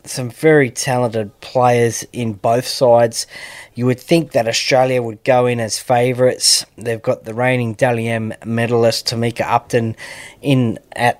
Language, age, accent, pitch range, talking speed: English, 20-39, Australian, 110-130 Hz, 145 wpm